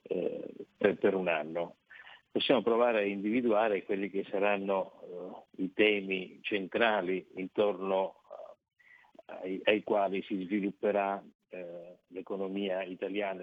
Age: 50-69